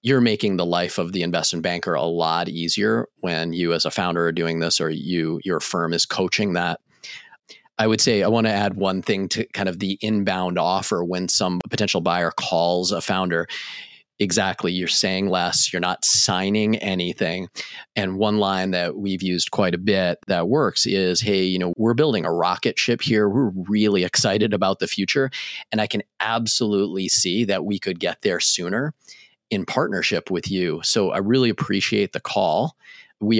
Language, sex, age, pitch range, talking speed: English, male, 30-49, 90-110 Hz, 190 wpm